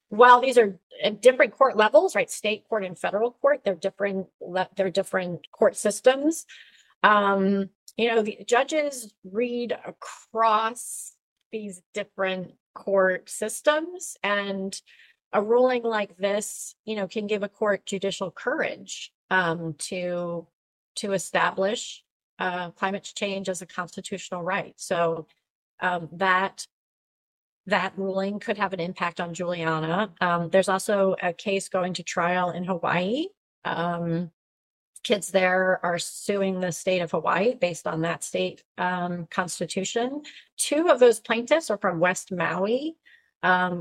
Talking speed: 135 wpm